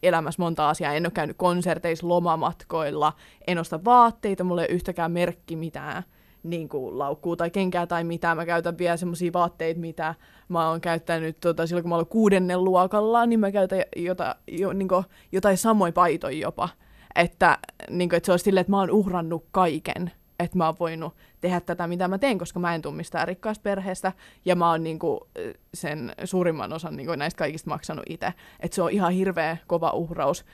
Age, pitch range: 20-39, 170-190 Hz